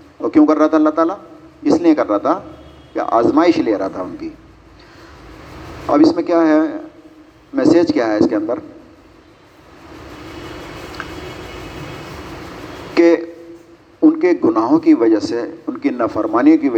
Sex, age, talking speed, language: male, 50-69, 145 wpm, Urdu